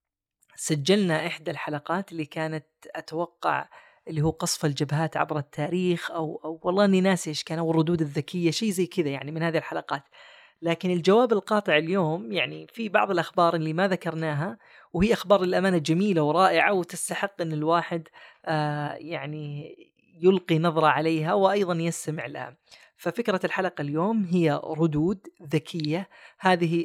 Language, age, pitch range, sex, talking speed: Arabic, 20-39, 155-190 Hz, female, 135 wpm